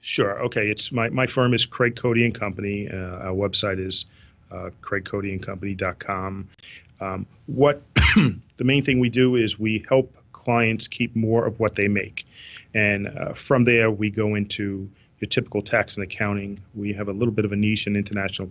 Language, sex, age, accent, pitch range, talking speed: English, male, 40-59, American, 100-120 Hz, 180 wpm